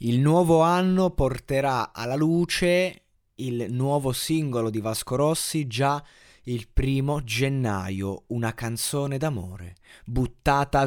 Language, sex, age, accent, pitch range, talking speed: Italian, male, 20-39, native, 110-140 Hz, 110 wpm